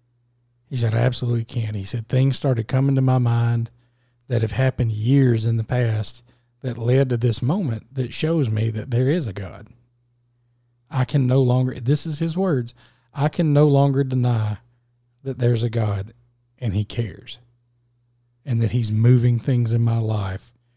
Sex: male